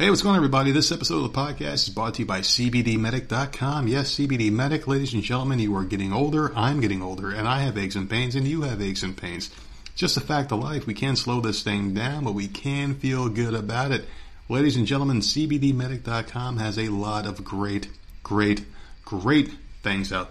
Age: 40-59